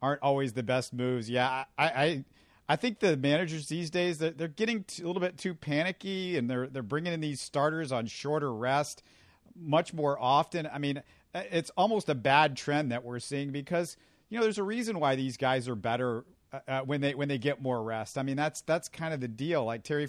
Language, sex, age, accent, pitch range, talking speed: English, male, 40-59, American, 130-165 Hz, 225 wpm